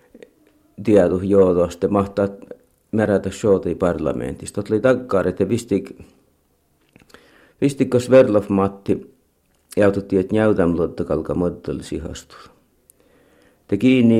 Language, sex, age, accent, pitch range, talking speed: Finnish, male, 50-69, native, 85-110 Hz, 95 wpm